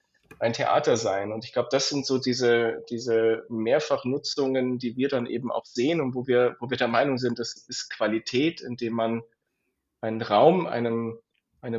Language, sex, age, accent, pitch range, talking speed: German, male, 30-49, German, 115-140 Hz, 175 wpm